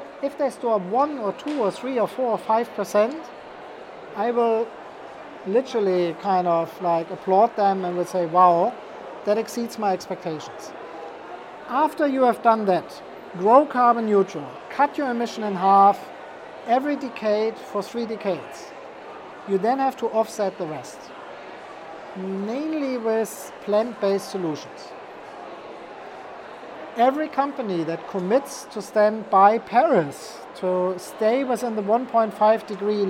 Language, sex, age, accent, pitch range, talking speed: English, male, 50-69, German, 195-245 Hz, 130 wpm